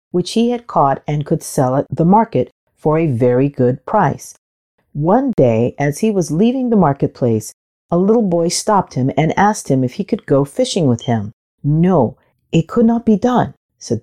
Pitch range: 130-195 Hz